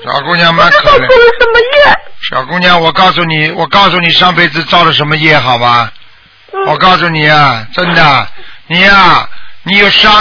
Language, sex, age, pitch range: Chinese, male, 60-79, 170-220 Hz